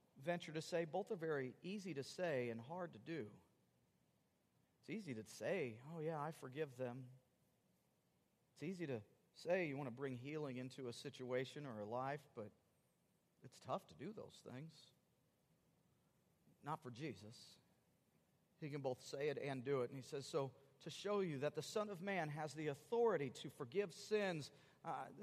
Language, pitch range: English, 155-225 Hz